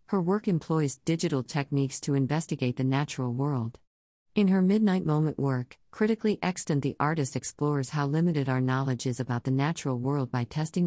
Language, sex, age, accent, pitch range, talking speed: English, female, 50-69, American, 130-155 Hz, 170 wpm